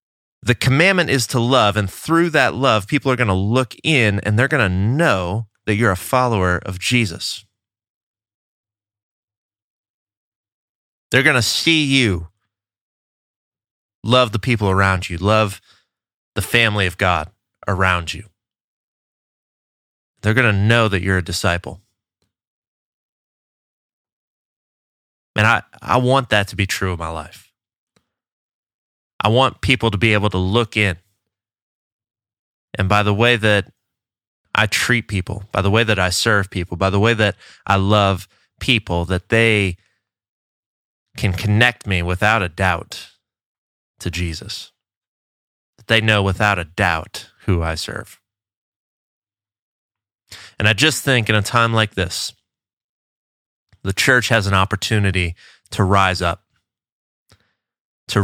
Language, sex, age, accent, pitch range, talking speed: English, male, 30-49, American, 95-115 Hz, 135 wpm